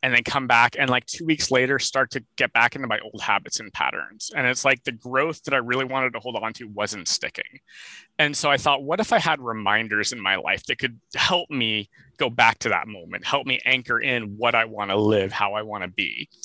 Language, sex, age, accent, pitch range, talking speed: English, male, 30-49, American, 115-145 Hz, 250 wpm